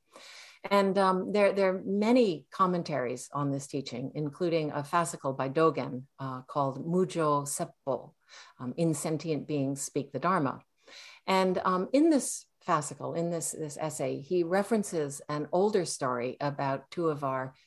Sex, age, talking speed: female, 50-69, 150 wpm